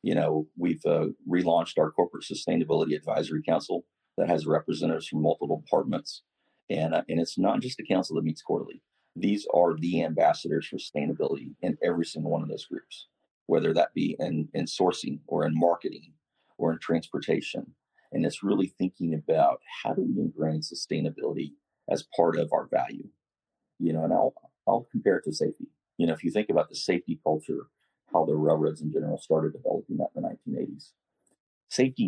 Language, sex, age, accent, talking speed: English, male, 40-59, American, 180 wpm